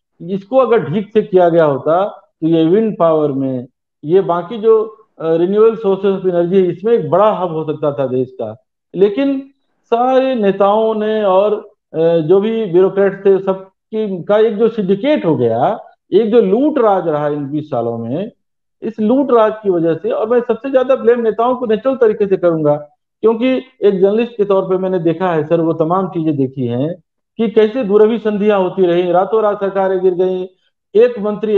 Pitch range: 170-220 Hz